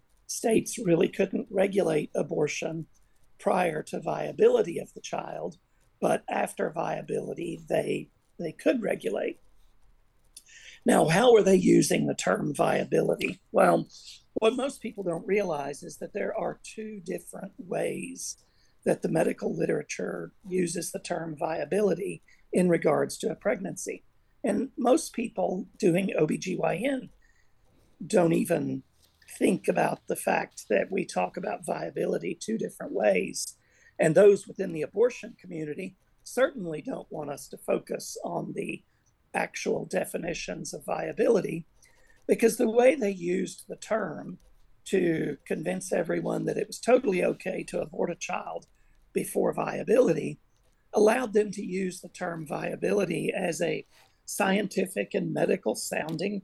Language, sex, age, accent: English, male, 50-69, American